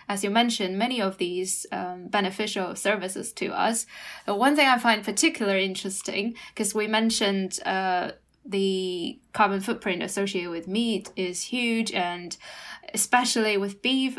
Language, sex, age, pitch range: Chinese, female, 10-29, 195-235 Hz